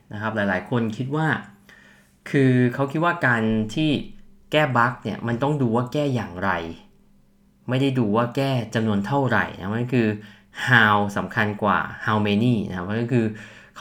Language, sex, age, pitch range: Thai, male, 20-39, 105-130 Hz